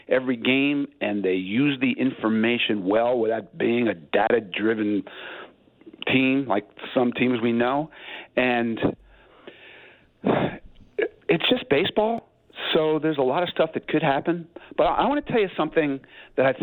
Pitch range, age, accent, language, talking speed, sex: 115-160 Hz, 50-69, American, English, 145 wpm, male